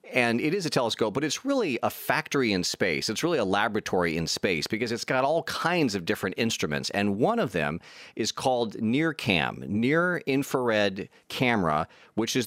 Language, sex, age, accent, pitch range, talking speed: English, male, 40-59, American, 95-130 Hz, 185 wpm